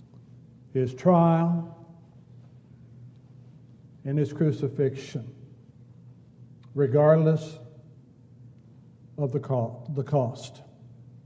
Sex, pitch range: male, 125-150 Hz